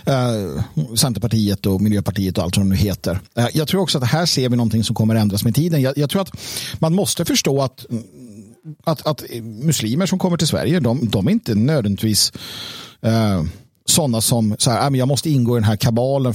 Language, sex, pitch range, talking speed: Swedish, male, 115-155 Hz, 195 wpm